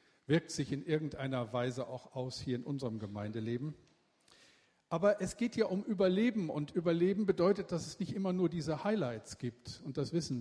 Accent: German